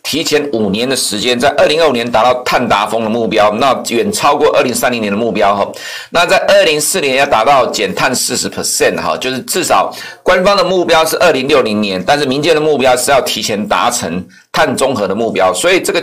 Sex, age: male, 50-69